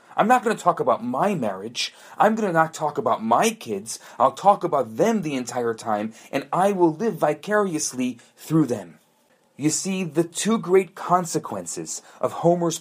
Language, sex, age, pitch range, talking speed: English, male, 30-49, 155-200 Hz, 180 wpm